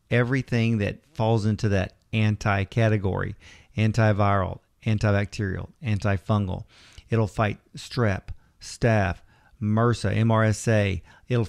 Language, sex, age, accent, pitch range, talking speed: English, male, 40-59, American, 105-120 Hz, 85 wpm